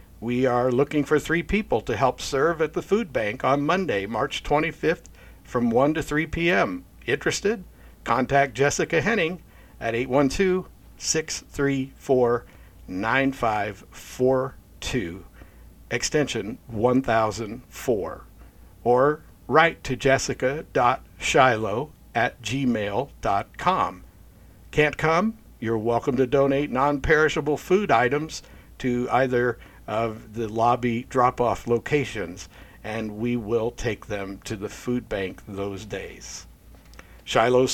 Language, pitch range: English, 115-150 Hz